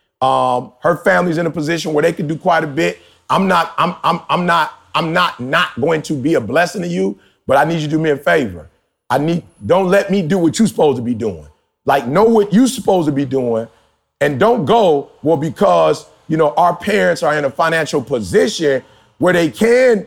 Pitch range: 150-200 Hz